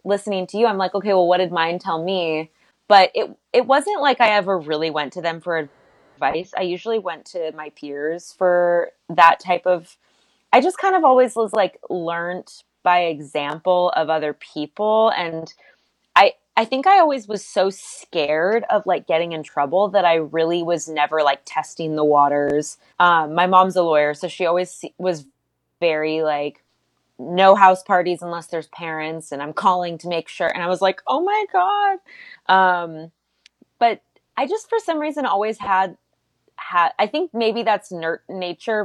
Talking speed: 180 wpm